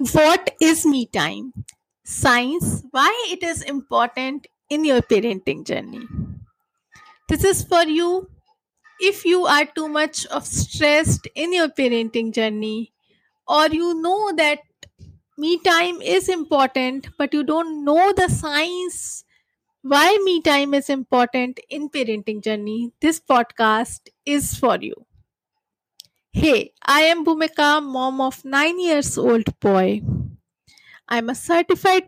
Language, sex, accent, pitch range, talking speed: English, female, Indian, 250-335 Hz, 125 wpm